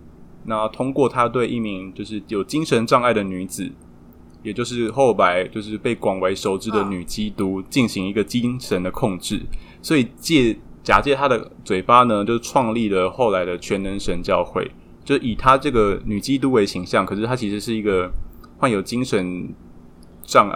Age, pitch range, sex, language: 20-39, 90-115 Hz, male, Chinese